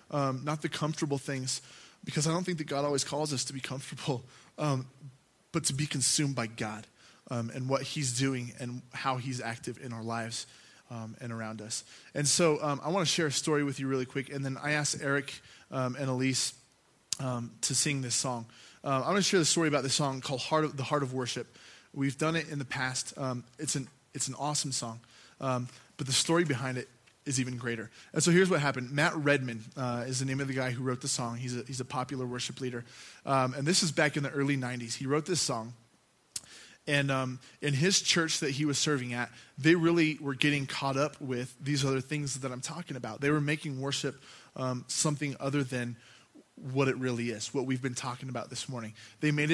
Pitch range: 125-145 Hz